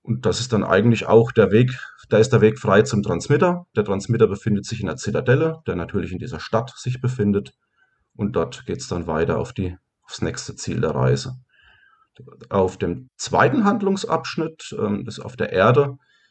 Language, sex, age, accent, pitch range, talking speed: German, male, 30-49, German, 100-130 Hz, 190 wpm